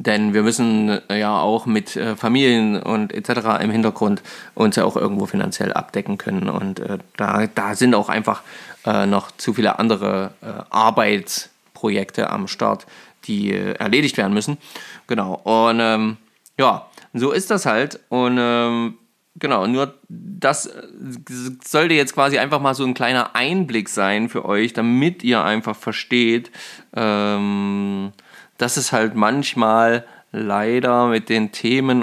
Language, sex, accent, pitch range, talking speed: German, male, German, 110-140 Hz, 145 wpm